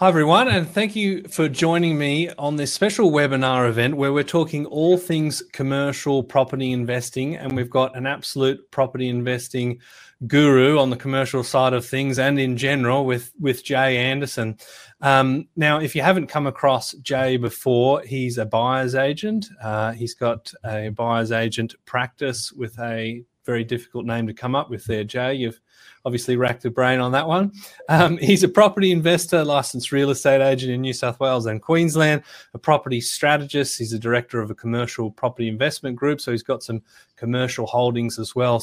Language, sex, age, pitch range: English, male, 30-49, 120-145 Hz